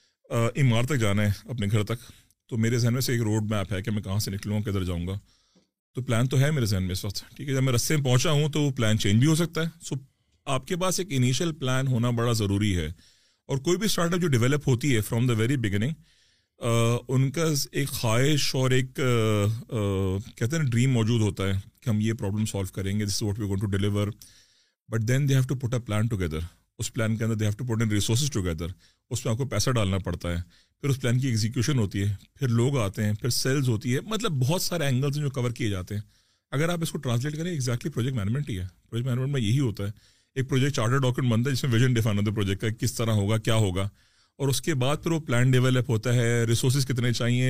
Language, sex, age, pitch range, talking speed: Urdu, male, 40-59, 105-135 Hz, 240 wpm